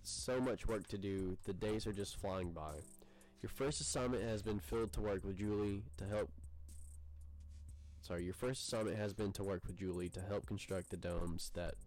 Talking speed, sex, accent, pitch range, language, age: 195 wpm, male, American, 85-105 Hz, English, 20-39